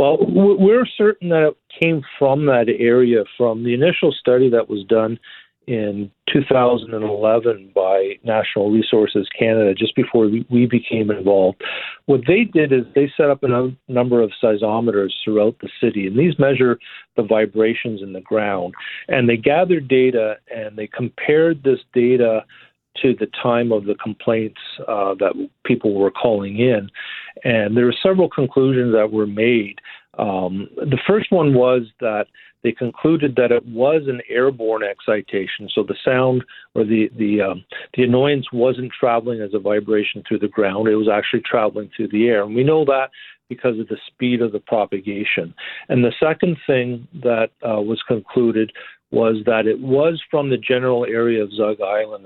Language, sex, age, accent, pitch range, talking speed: English, male, 50-69, American, 110-130 Hz, 170 wpm